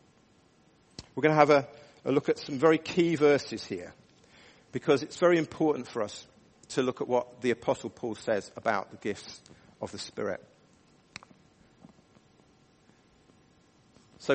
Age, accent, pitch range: 50-69, British, 115-150 Hz